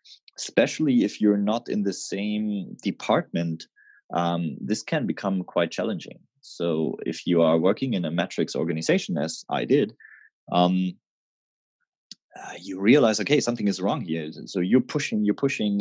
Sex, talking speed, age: male, 150 wpm, 30-49